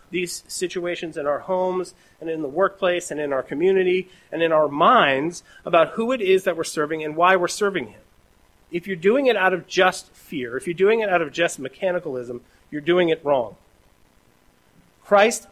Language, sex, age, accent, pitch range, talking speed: English, male, 40-59, American, 150-190 Hz, 195 wpm